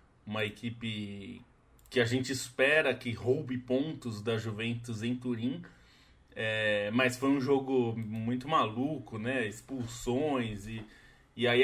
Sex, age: male, 20-39